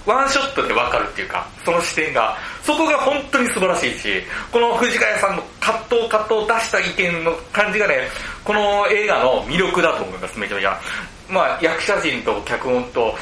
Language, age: Japanese, 40-59